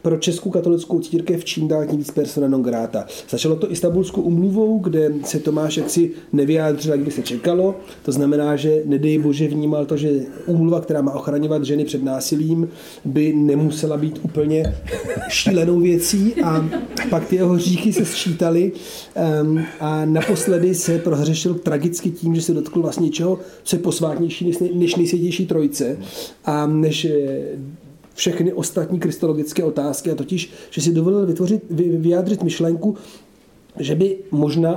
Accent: native